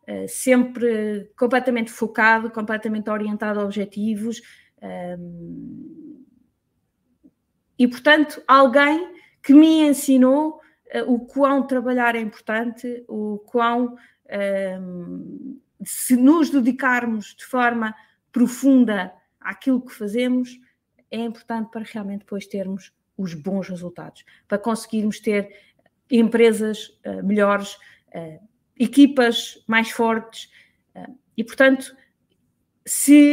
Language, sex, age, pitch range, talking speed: Portuguese, female, 20-39, 205-250 Hz, 90 wpm